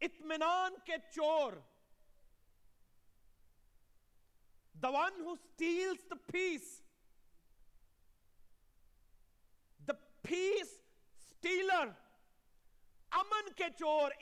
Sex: male